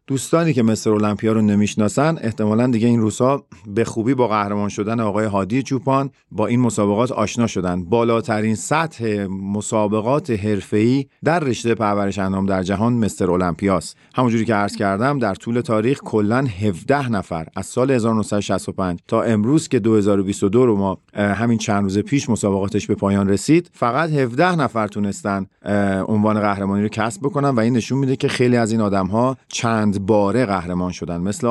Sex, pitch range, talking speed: male, 100-125 Hz, 160 wpm